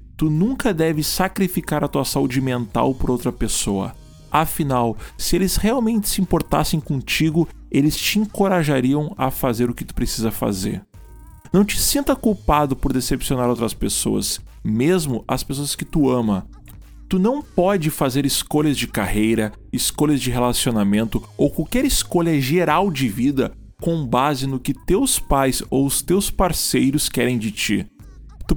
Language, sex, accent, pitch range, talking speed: Portuguese, male, Brazilian, 125-185 Hz, 150 wpm